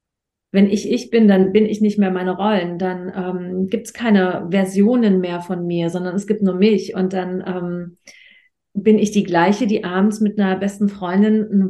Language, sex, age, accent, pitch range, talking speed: German, female, 40-59, German, 195-220 Hz, 200 wpm